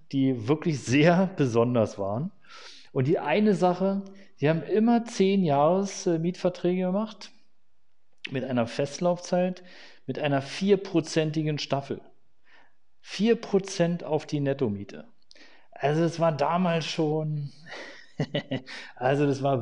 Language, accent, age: German, German, 40-59